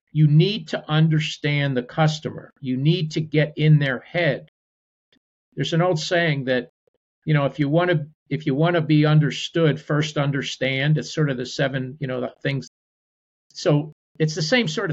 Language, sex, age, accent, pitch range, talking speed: English, male, 50-69, American, 135-165 Hz, 185 wpm